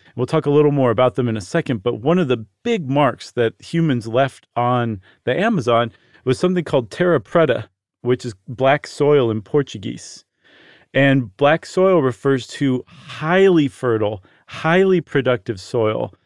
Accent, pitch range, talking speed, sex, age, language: American, 120-155 Hz, 160 wpm, male, 40-59, English